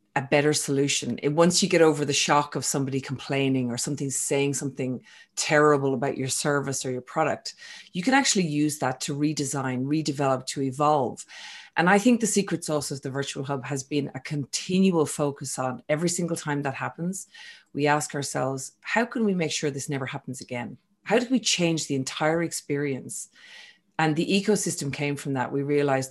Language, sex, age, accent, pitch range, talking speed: English, female, 30-49, Irish, 135-160 Hz, 190 wpm